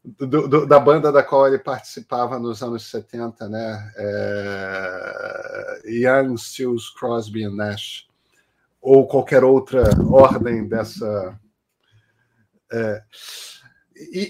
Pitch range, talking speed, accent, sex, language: 120-155 Hz, 100 wpm, Brazilian, male, Portuguese